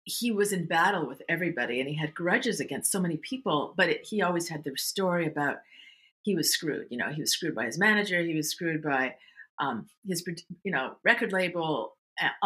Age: 40-59